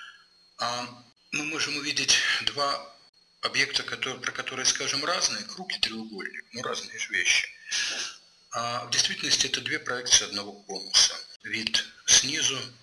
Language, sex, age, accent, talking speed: Russian, male, 50-69, native, 125 wpm